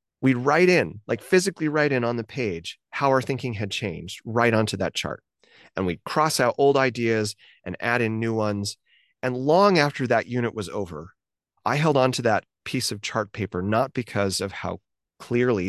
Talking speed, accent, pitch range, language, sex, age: 190 wpm, American, 110-145 Hz, English, male, 30-49